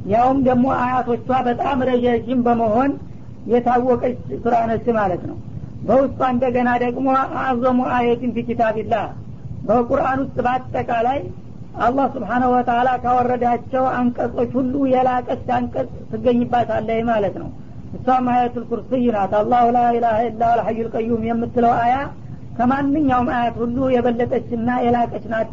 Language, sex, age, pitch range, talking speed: Amharic, female, 50-69, 235-260 Hz, 110 wpm